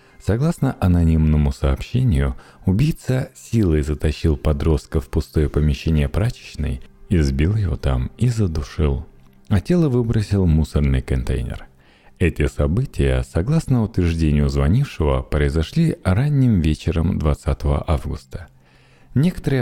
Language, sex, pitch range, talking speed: Russian, male, 70-105 Hz, 100 wpm